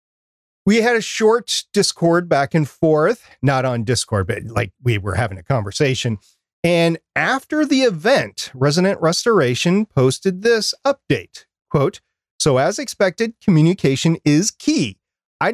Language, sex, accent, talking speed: English, male, American, 135 wpm